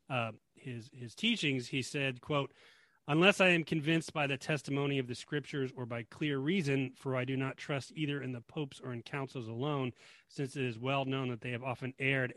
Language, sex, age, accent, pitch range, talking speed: English, male, 30-49, American, 125-160 Hz, 215 wpm